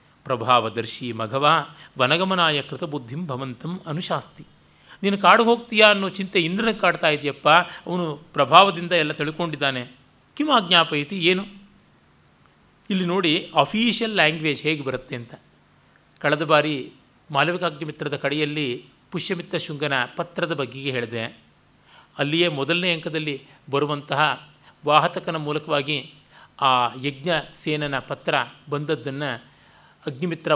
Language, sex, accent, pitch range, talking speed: Kannada, male, native, 135-175 Hz, 95 wpm